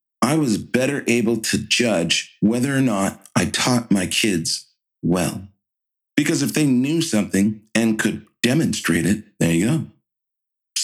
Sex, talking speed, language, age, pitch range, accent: male, 150 wpm, English, 40-59, 105-135 Hz, American